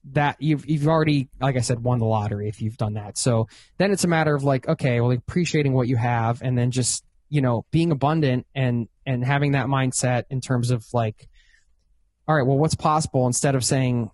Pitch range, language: 115-145 Hz, English